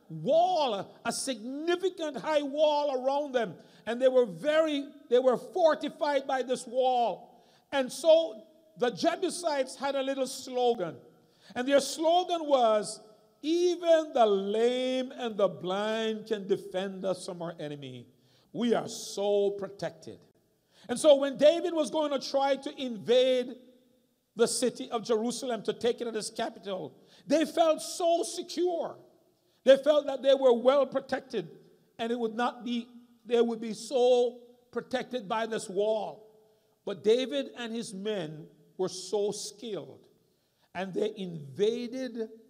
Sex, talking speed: male, 140 wpm